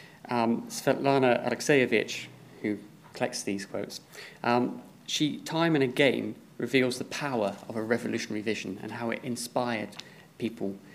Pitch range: 110-130 Hz